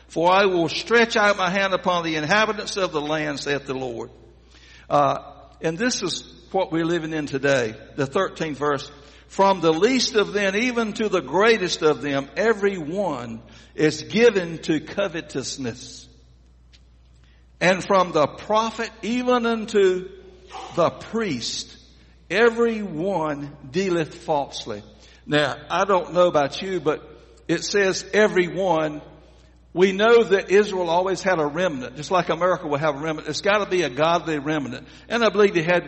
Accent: American